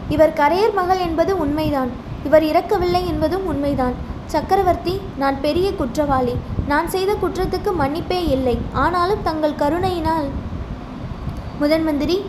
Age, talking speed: 20-39, 105 wpm